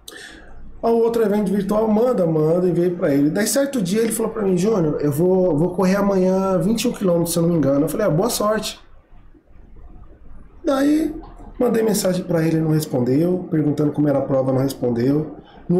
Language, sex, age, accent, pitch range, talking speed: Portuguese, male, 20-39, Brazilian, 155-210 Hz, 195 wpm